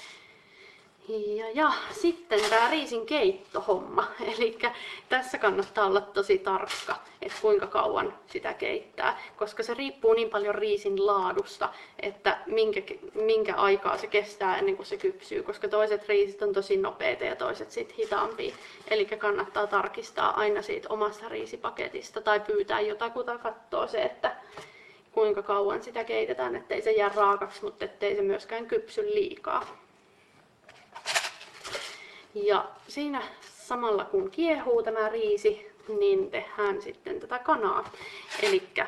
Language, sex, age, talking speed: Finnish, female, 30-49, 125 wpm